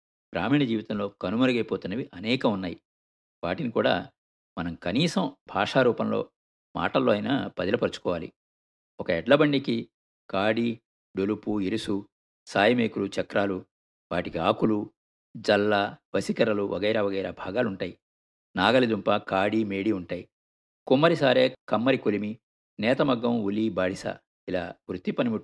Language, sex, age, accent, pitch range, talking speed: Telugu, male, 50-69, native, 70-110 Hz, 90 wpm